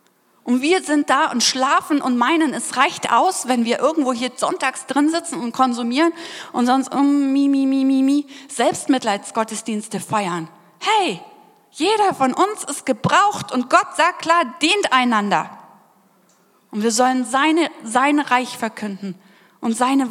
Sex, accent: female, German